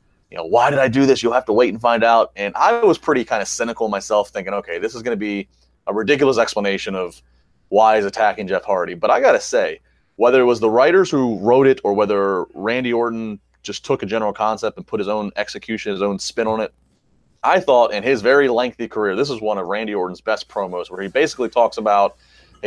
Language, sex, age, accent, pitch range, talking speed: English, male, 30-49, American, 95-125 Hz, 240 wpm